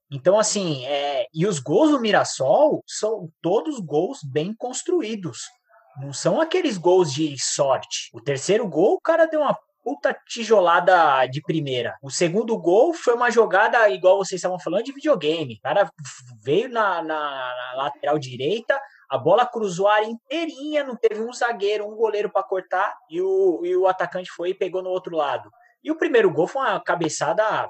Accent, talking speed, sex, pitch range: Brazilian, 180 wpm, male, 150-245 Hz